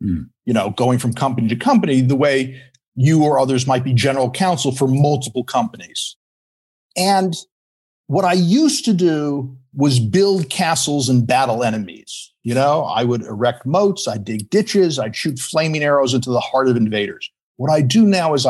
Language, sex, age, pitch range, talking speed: English, male, 50-69, 125-175 Hz, 180 wpm